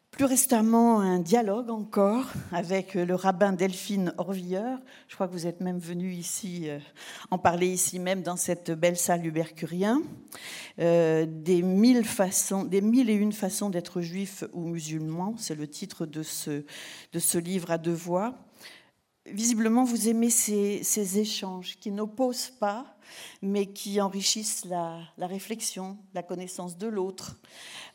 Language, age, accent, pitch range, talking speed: French, 50-69, French, 175-215 Hz, 150 wpm